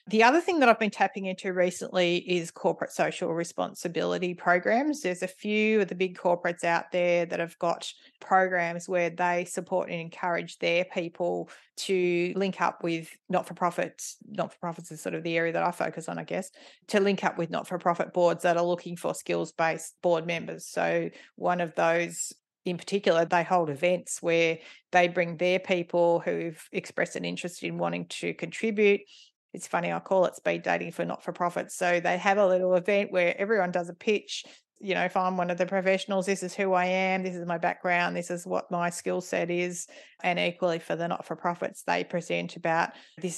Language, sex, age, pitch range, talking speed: English, female, 30-49, 170-185 Hz, 195 wpm